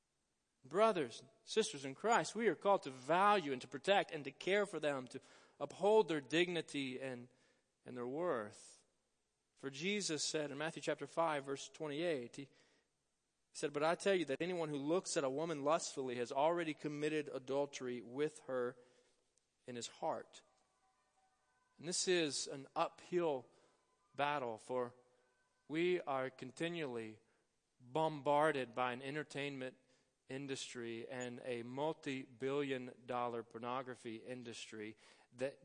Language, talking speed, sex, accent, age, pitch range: English, 135 wpm, male, American, 40-59, 125-155 Hz